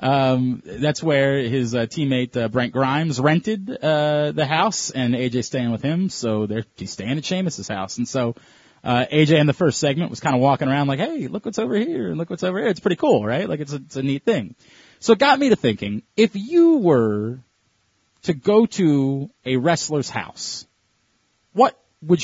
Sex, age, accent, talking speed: male, 30-49, American, 210 wpm